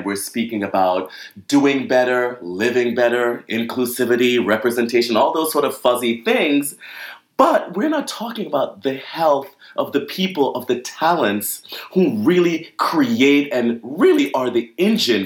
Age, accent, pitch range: 30-49, American, 105-170 Hz